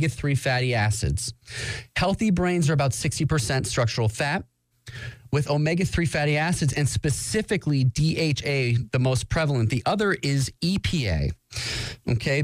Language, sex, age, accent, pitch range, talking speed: English, male, 30-49, American, 120-155 Hz, 125 wpm